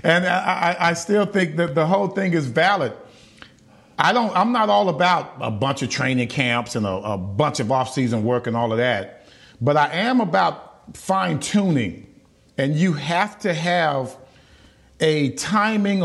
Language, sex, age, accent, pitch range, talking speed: English, male, 40-59, American, 135-185 Hz, 170 wpm